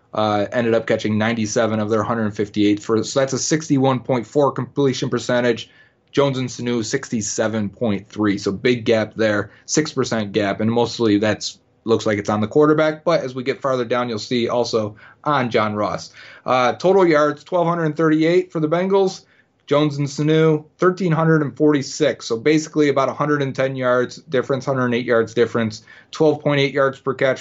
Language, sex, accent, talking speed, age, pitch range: English, male, American, 150 wpm, 30-49, 115-150 Hz